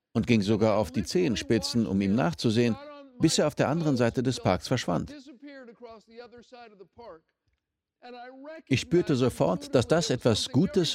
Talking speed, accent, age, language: 135 wpm, German, 50-69, German